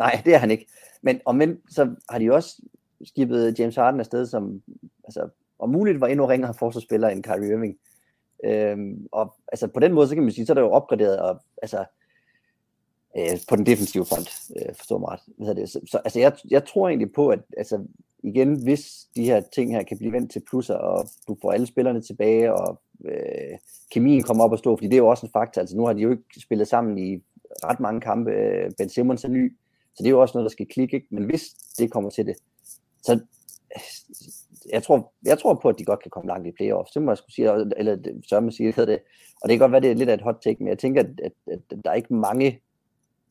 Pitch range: 110-130 Hz